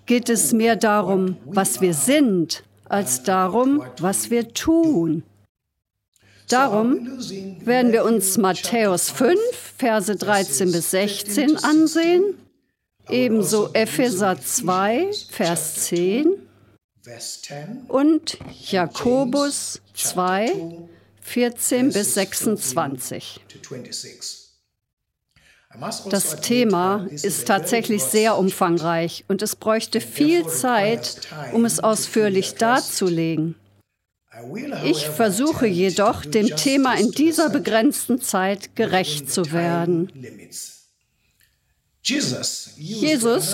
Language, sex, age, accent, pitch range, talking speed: German, female, 50-69, German, 175-245 Hz, 85 wpm